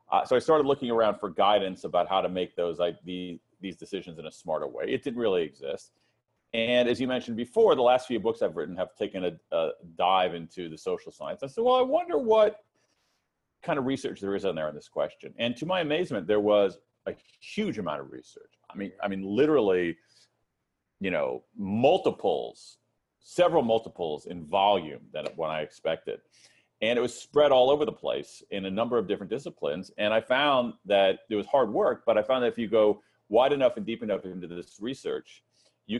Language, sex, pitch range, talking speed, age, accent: English, male, 95-145 Hz, 210 wpm, 40-59, American